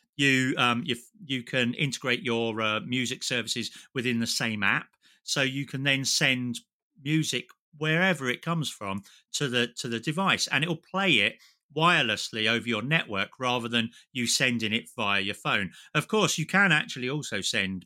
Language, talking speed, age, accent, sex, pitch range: English, 180 wpm, 30-49, British, male, 110-145 Hz